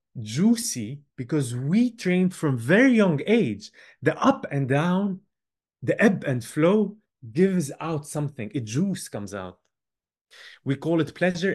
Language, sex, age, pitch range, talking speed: English, male, 30-49, 125-180 Hz, 140 wpm